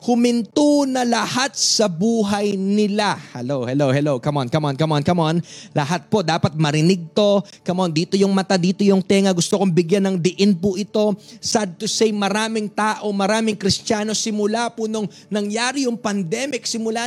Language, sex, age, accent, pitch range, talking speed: English, male, 20-39, Filipino, 140-220 Hz, 180 wpm